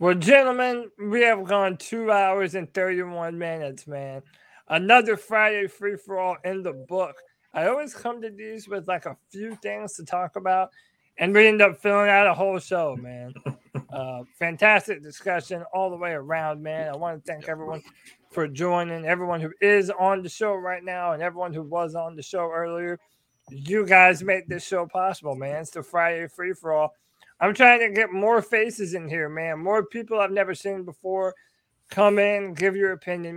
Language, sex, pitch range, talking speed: English, male, 160-190 Hz, 185 wpm